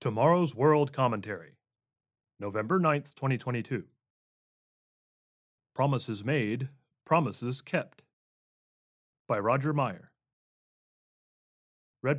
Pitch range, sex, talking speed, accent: 115-155 Hz, male, 70 wpm, American